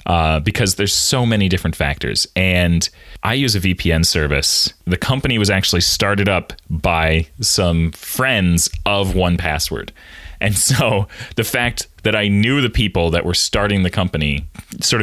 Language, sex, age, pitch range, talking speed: English, male, 30-49, 85-105 Hz, 160 wpm